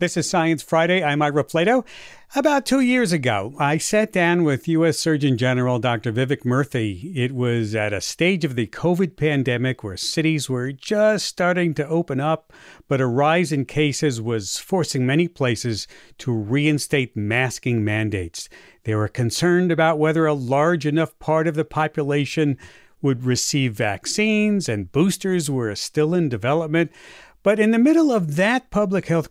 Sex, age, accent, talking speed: male, 50-69, American, 165 wpm